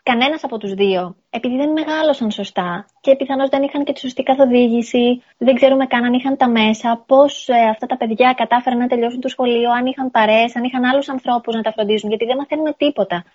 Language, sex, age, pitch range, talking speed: Greek, female, 20-39, 220-280 Hz, 210 wpm